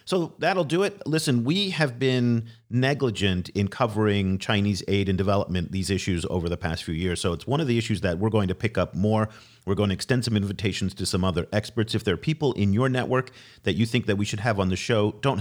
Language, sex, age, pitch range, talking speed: English, male, 40-59, 95-115 Hz, 245 wpm